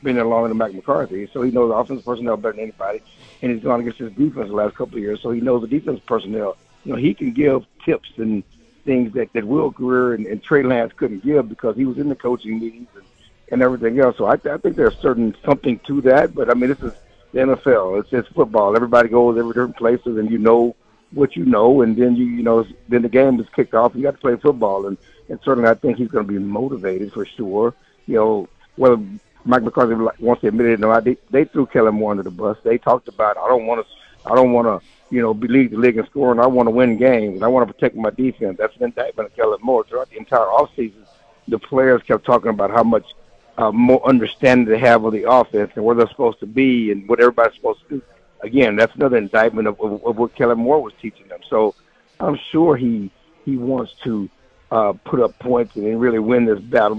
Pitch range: 110-125 Hz